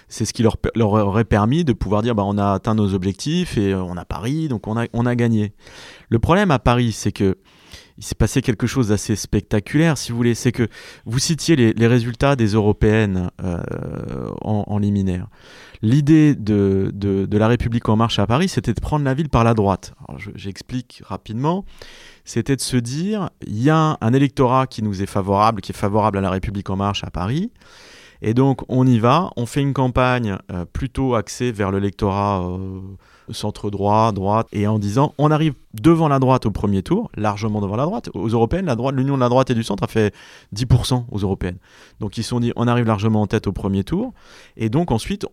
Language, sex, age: French, male, 30-49